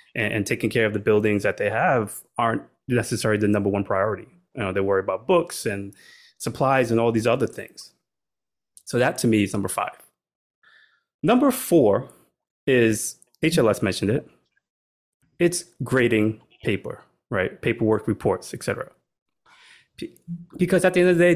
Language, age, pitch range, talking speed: English, 20-39, 105-130 Hz, 155 wpm